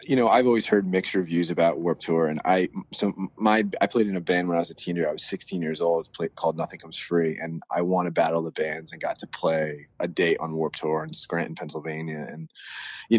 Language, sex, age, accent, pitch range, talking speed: English, male, 20-39, American, 80-95 Hz, 250 wpm